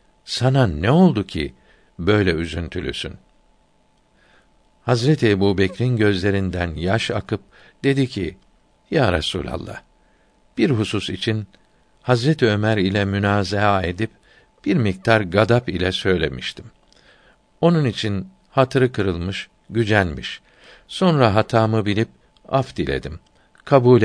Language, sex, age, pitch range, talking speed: Turkish, male, 60-79, 95-120 Hz, 95 wpm